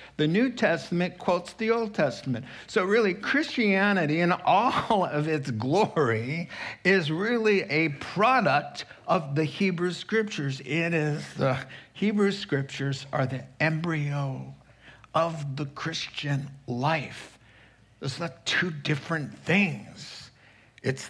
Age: 60-79